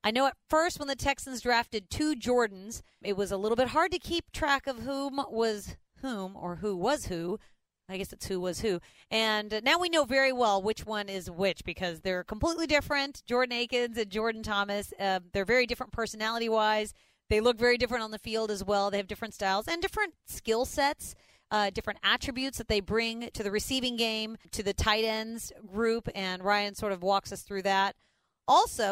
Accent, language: American, English